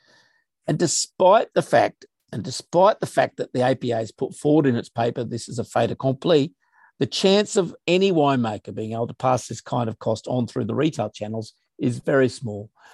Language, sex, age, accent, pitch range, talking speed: English, male, 50-69, Australian, 115-150 Hz, 200 wpm